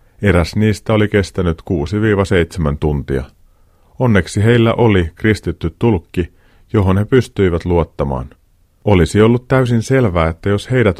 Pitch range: 85-110 Hz